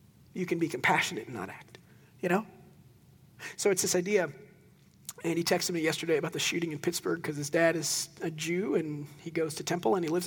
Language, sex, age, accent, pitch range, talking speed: English, male, 40-59, American, 155-185 Hz, 215 wpm